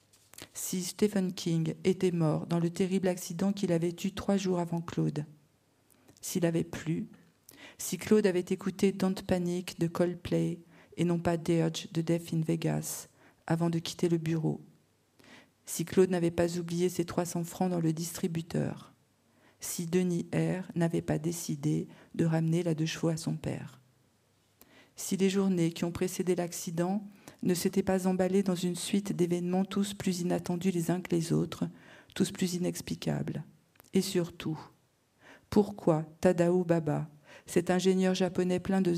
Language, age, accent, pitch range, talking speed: French, 50-69, French, 165-185 Hz, 155 wpm